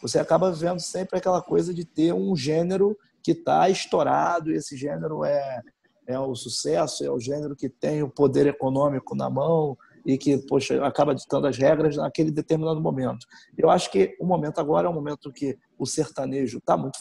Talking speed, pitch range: 190 wpm, 145-195 Hz